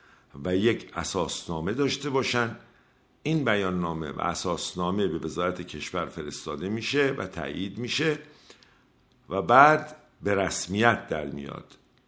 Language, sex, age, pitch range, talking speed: Persian, male, 50-69, 90-130 Hz, 115 wpm